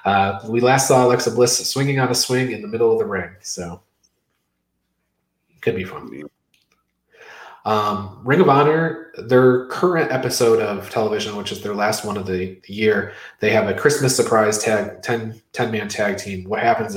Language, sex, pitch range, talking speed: English, male, 95-125 Hz, 175 wpm